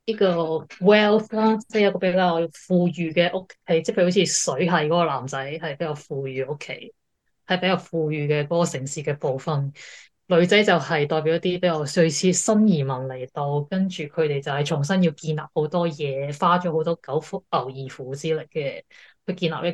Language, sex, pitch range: Chinese, female, 150-185 Hz